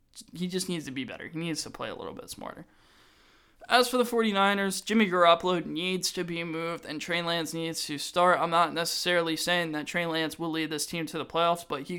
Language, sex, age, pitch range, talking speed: English, male, 20-39, 150-180 Hz, 230 wpm